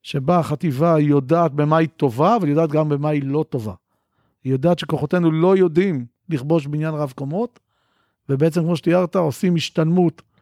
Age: 40-59